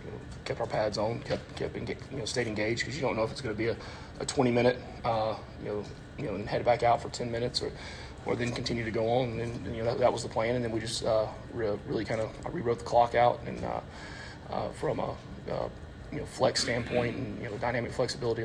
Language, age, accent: English, 30-49, American